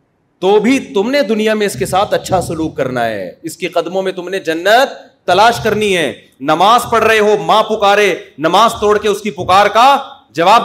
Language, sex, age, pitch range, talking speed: Urdu, male, 40-59, 175-225 Hz, 210 wpm